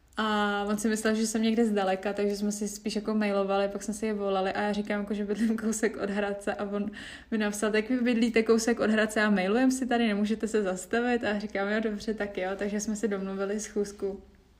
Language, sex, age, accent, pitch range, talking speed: Czech, female, 20-39, native, 205-225 Hz, 230 wpm